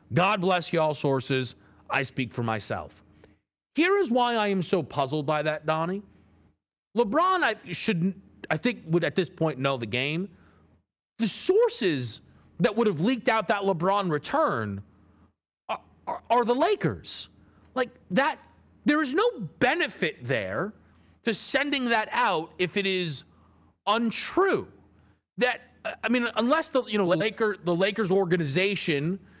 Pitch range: 150-245 Hz